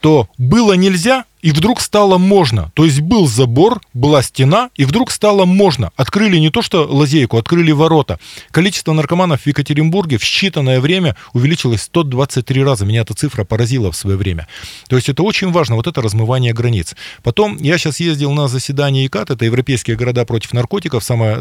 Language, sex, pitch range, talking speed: Russian, male, 120-165 Hz, 175 wpm